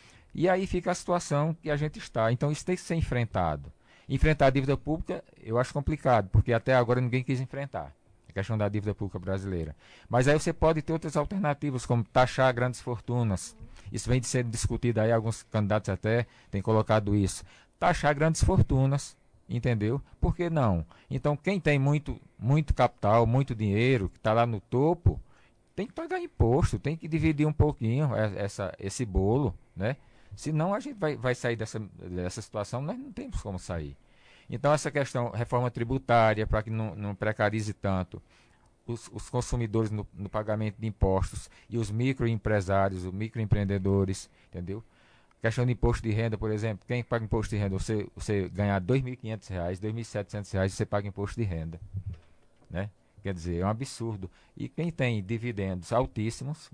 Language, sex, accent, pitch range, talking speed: Portuguese, male, Brazilian, 100-135 Hz, 175 wpm